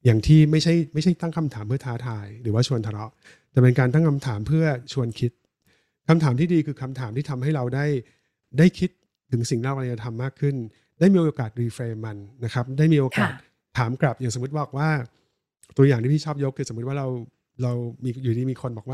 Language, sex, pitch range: Thai, male, 120-150 Hz